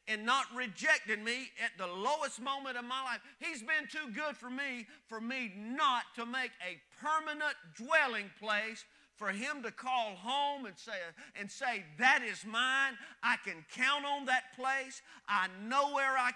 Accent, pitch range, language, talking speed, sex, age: American, 205-265 Hz, English, 175 wpm, male, 40-59